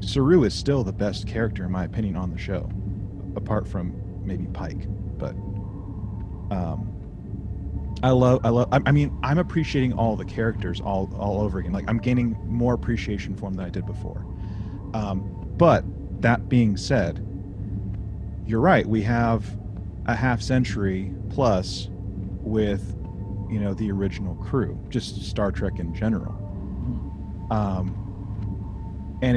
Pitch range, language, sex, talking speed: 95-115 Hz, English, male, 145 wpm